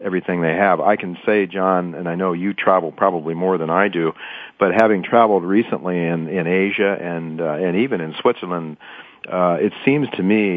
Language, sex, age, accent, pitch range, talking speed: English, male, 50-69, American, 85-100 Hz, 200 wpm